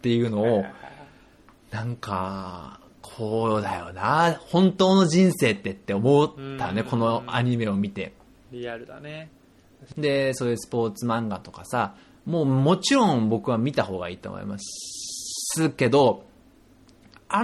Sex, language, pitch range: male, Japanese, 115-190 Hz